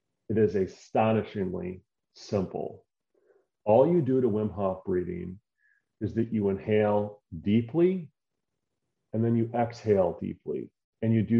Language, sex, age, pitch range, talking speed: English, male, 40-59, 105-130 Hz, 125 wpm